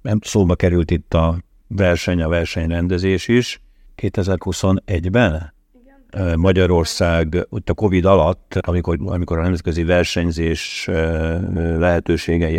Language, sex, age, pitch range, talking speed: Hungarian, male, 50-69, 80-90 Hz, 95 wpm